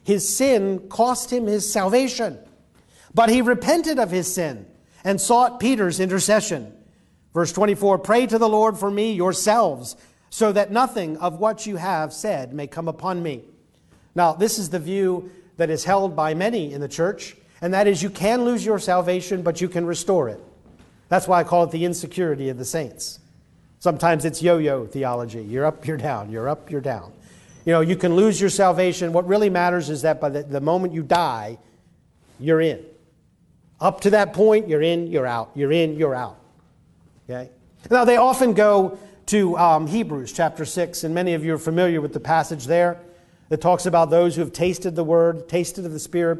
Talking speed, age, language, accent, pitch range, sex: 195 wpm, 50-69, English, American, 160-200 Hz, male